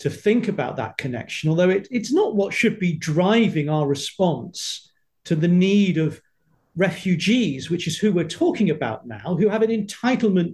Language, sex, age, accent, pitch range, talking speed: English, male, 40-59, British, 160-230 Hz, 170 wpm